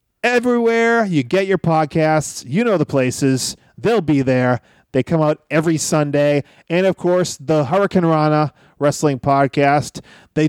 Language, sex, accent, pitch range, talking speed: English, male, American, 150-220 Hz, 150 wpm